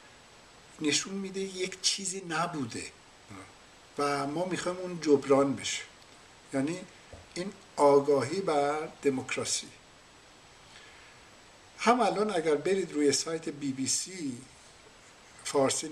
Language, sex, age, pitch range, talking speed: English, male, 60-79, 135-185 Hz, 100 wpm